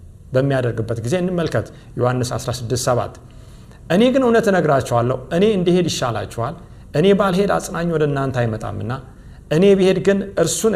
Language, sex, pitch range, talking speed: Amharic, male, 115-180 Hz, 135 wpm